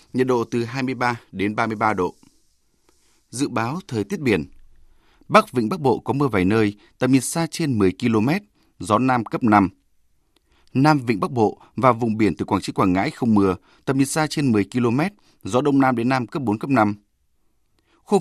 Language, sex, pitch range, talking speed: Vietnamese, male, 105-135 Hz, 200 wpm